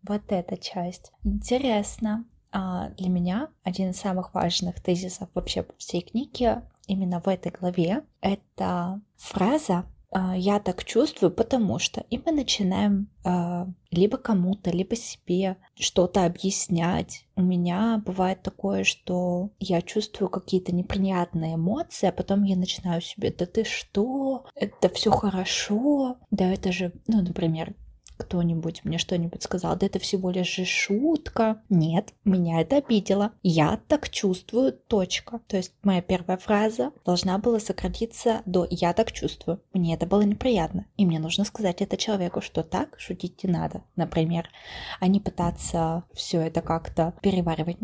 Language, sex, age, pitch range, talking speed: Russian, female, 20-39, 175-210 Hz, 145 wpm